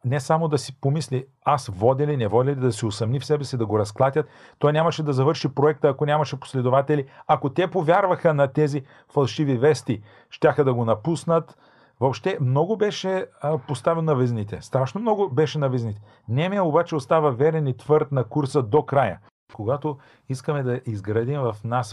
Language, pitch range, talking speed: Bulgarian, 125-155 Hz, 180 wpm